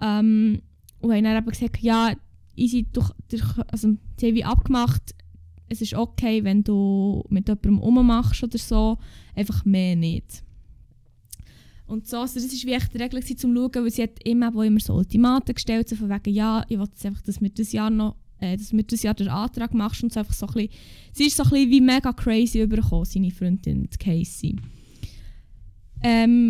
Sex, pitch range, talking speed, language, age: female, 195-240 Hz, 195 wpm, German, 10-29